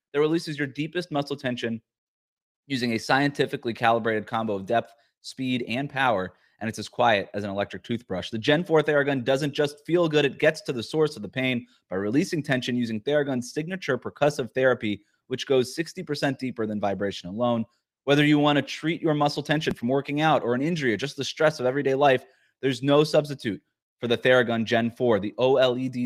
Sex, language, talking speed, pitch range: male, English, 195 wpm, 115-150 Hz